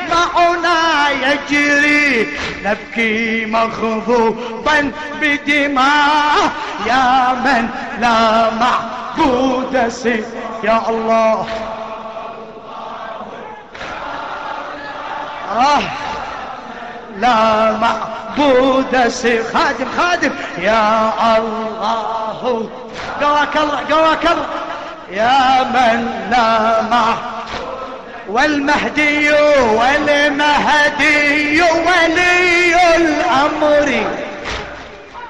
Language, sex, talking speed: Arabic, male, 55 wpm